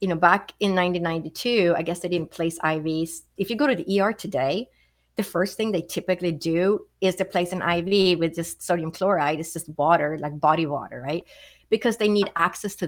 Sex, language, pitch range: female, English, 165-200 Hz